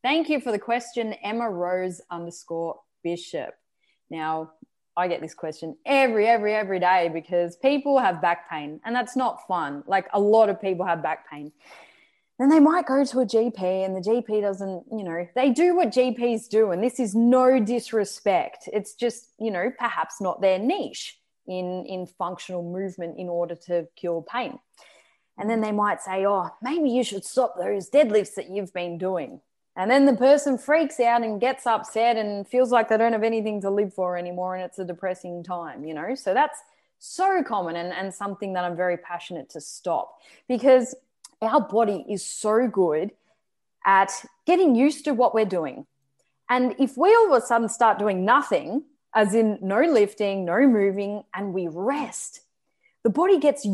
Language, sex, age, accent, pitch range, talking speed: English, female, 20-39, Australian, 180-250 Hz, 185 wpm